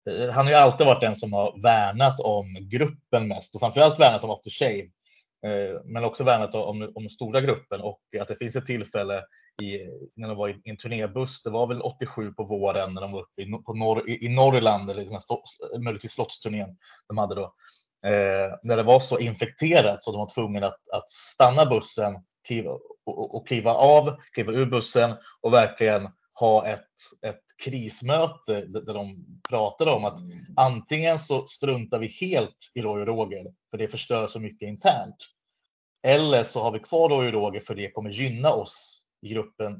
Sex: male